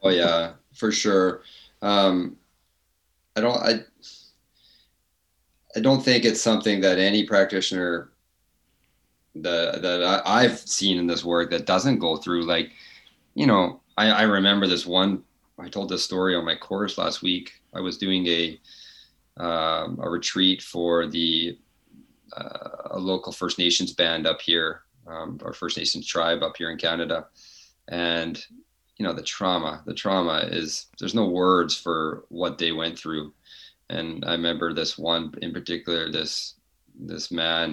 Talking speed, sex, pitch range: 155 wpm, male, 85-95 Hz